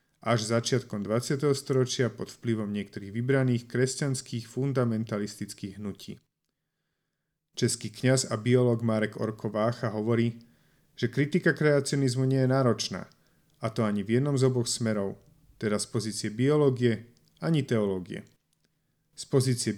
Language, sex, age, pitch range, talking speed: Slovak, male, 40-59, 110-130 Hz, 120 wpm